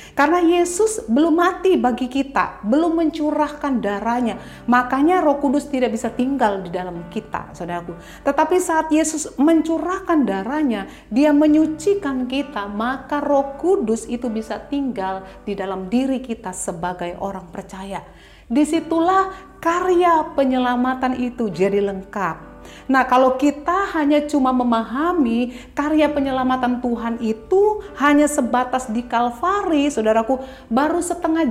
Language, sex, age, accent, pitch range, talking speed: Indonesian, female, 40-59, native, 240-320 Hz, 120 wpm